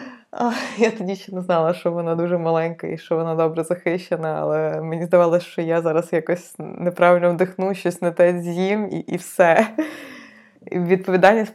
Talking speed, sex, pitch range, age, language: 165 wpm, female, 165-185 Hz, 20-39, Ukrainian